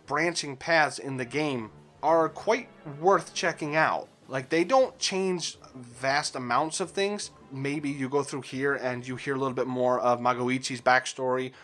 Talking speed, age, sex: 170 wpm, 20-39, male